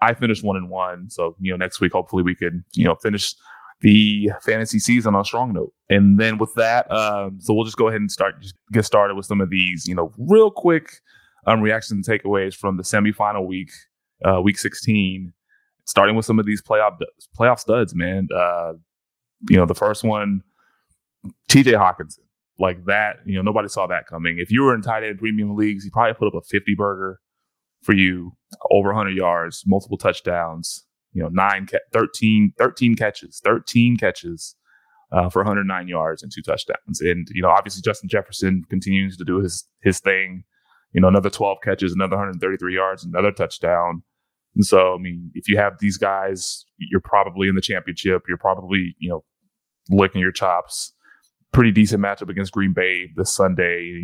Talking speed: 190 wpm